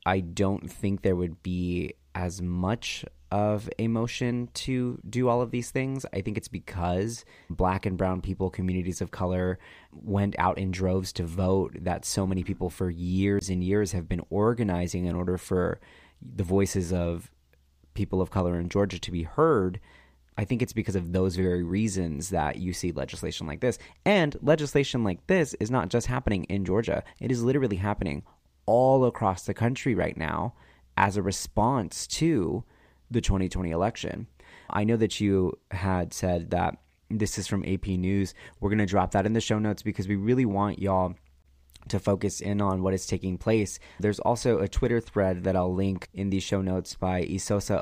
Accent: American